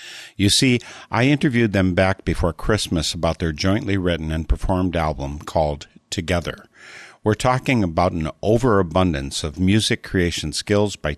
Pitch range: 80-105 Hz